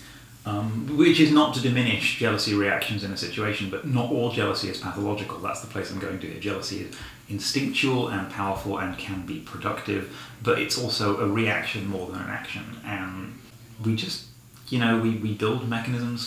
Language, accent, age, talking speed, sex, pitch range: English, British, 30-49, 185 wpm, male, 100-120 Hz